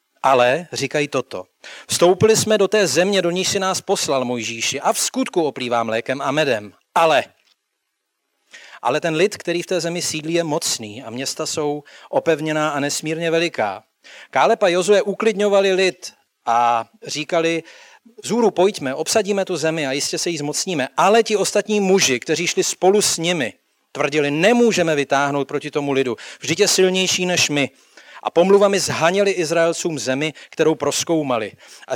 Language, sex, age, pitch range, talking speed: Czech, male, 40-59, 150-195 Hz, 160 wpm